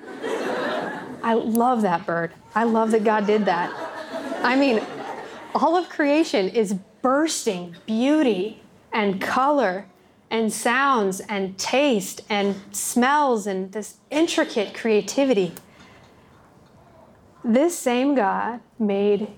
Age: 30-49